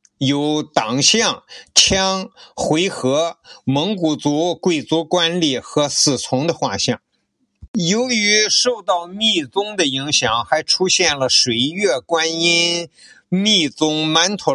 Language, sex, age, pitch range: Chinese, male, 50-69, 140-200 Hz